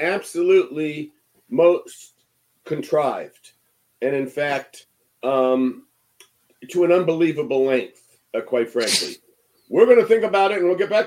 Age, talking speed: 50-69, 130 wpm